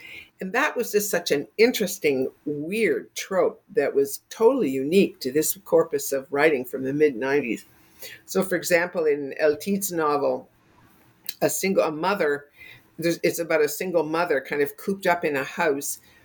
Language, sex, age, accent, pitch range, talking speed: English, female, 50-69, American, 140-200 Hz, 160 wpm